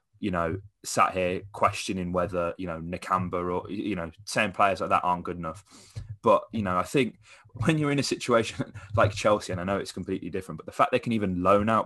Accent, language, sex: British, English, male